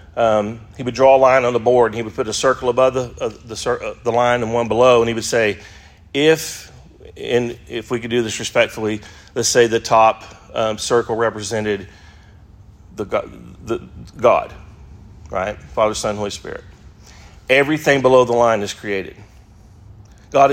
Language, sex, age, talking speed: English, male, 40-59, 165 wpm